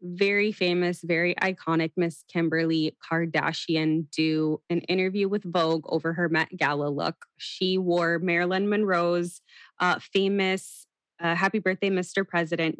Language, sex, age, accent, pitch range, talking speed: English, female, 20-39, American, 165-210 Hz, 130 wpm